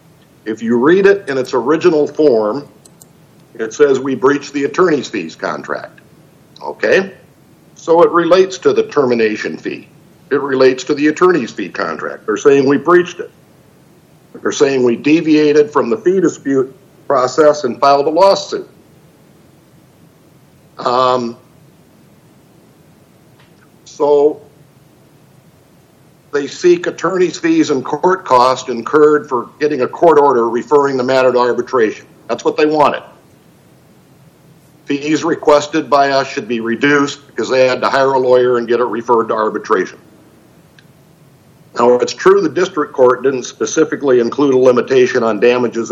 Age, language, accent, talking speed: 60-79, English, American, 140 wpm